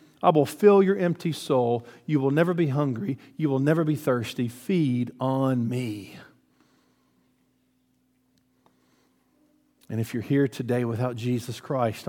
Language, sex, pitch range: English, male, 120-150 Hz